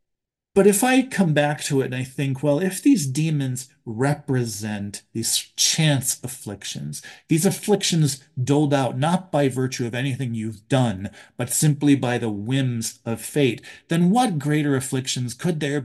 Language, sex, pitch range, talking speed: English, male, 125-160 Hz, 160 wpm